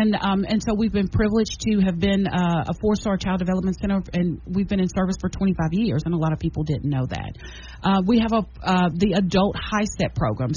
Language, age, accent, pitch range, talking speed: English, 40-59, American, 170-210 Hz, 240 wpm